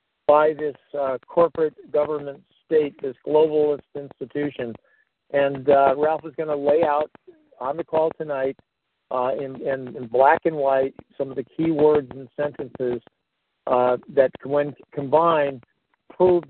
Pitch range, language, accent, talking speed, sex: 135-155 Hz, English, American, 140 wpm, male